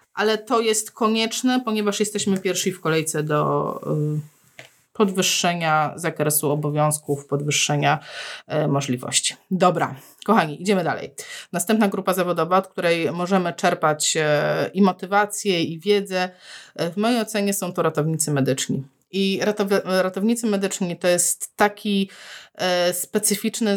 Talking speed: 110 wpm